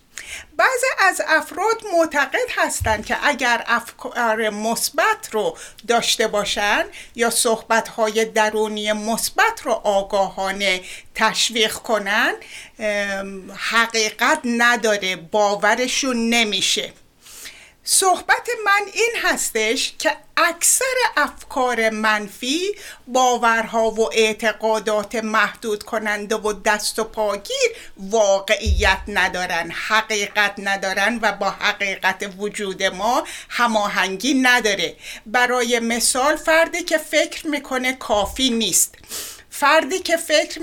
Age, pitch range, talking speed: 60-79, 215-310 Hz, 95 wpm